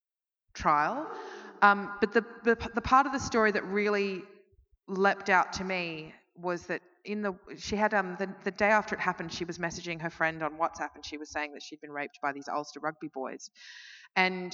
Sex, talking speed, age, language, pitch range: female, 205 wpm, 20-39, English, 160-205 Hz